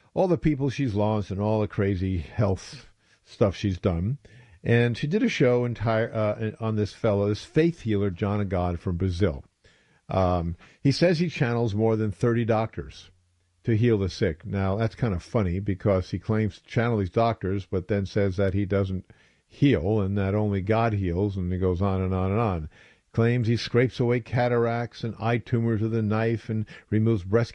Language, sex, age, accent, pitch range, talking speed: English, male, 50-69, American, 100-120 Hz, 195 wpm